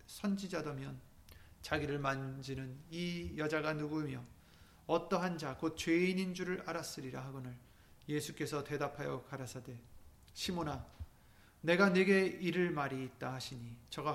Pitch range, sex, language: 130-170 Hz, male, Korean